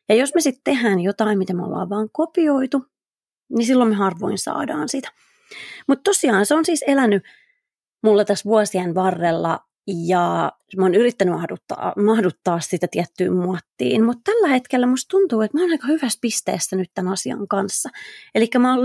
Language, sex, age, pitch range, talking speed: Finnish, female, 30-49, 185-255 Hz, 170 wpm